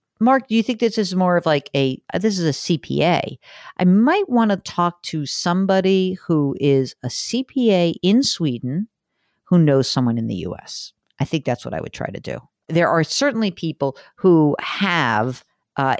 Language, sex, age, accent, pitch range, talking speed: English, female, 50-69, American, 130-180 Hz, 185 wpm